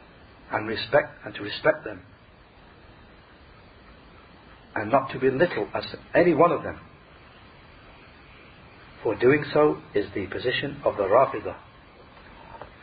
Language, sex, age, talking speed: English, male, 60-79, 110 wpm